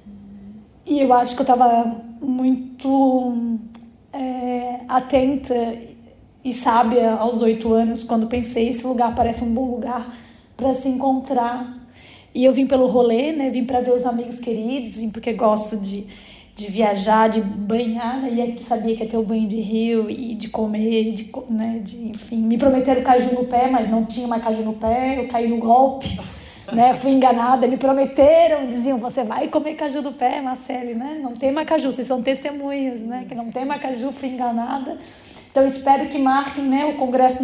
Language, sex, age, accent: Portuguese, female, 10-29, Brazilian